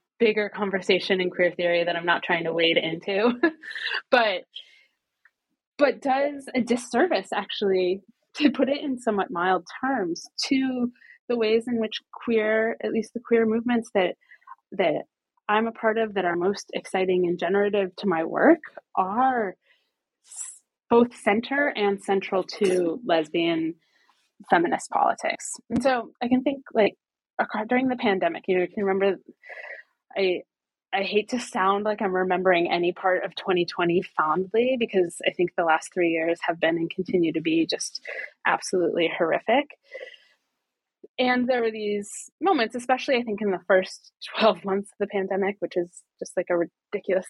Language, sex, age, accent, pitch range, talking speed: English, female, 20-39, American, 185-245 Hz, 155 wpm